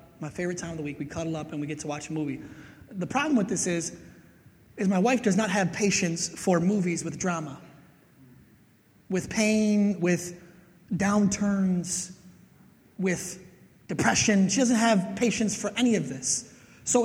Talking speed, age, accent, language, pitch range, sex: 165 wpm, 30-49, American, English, 190-250 Hz, male